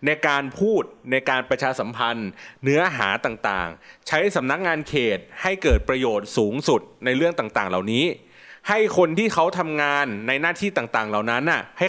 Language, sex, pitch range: Thai, male, 130-180 Hz